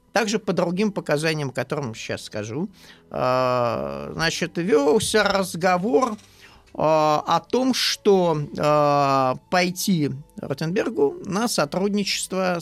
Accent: native